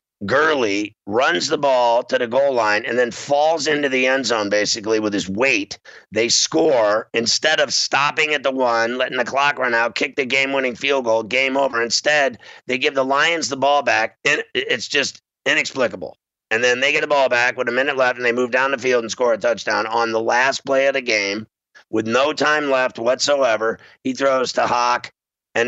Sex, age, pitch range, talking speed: male, 50-69, 115-140 Hz, 210 wpm